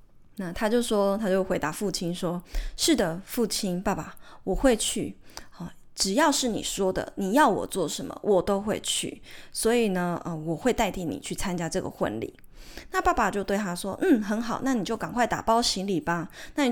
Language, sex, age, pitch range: Chinese, female, 20-39, 185-250 Hz